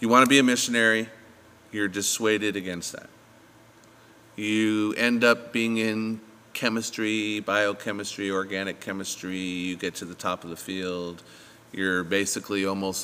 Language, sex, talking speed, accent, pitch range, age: English, male, 135 wpm, American, 95-110 Hz, 40-59